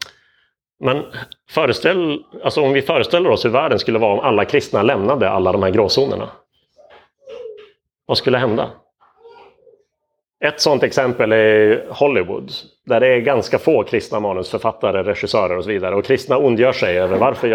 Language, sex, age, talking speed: Swedish, male, 30-49, 150 wpm